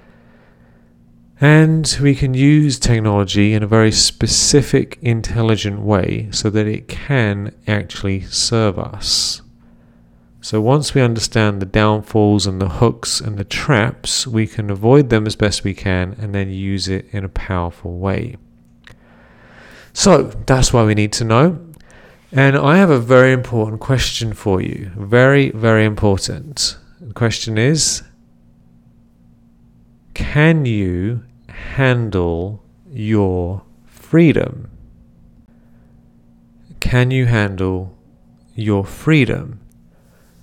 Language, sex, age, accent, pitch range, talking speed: English, male, 40-59, British, 95-125 Hz, 115 wpm